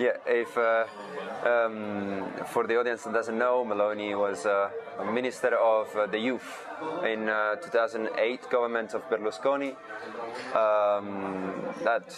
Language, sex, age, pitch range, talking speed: English, male, 20-39, 105-125 Hz, 135 wpm